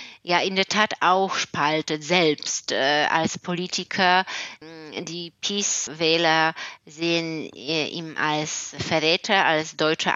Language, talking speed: German, 120 wpm